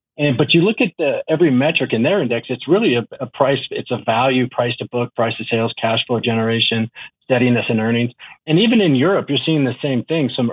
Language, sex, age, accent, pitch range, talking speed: English, male, 40-59, American, 120-145 Hz, 235 wpm